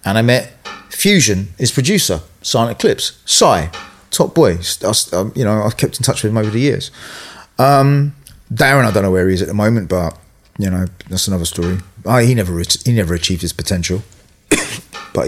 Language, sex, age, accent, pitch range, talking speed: English, male, 30-49, British, 95-125 Hz, 200 wpm